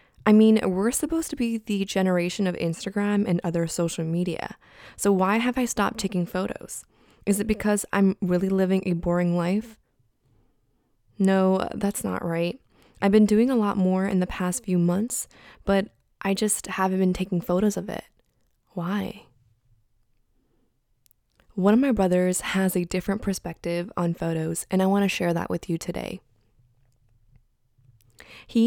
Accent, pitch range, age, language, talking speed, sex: American, 175-205 Hz, 20-39, English, 155 wpm, female